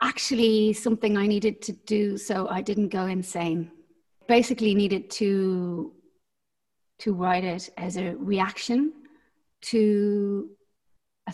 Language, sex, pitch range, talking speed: English, female, 185-230 Hz, 120 wpm